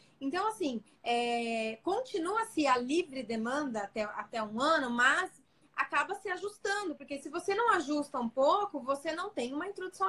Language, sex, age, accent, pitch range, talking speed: Portuguese, female, 20-39, Brazilian, 245-340 Hz, 160 wpm